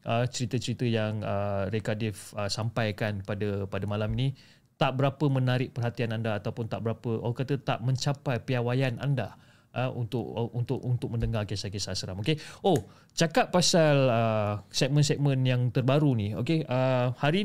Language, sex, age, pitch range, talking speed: Malay, male, 30-49, 115-145 Hz, 160 wpm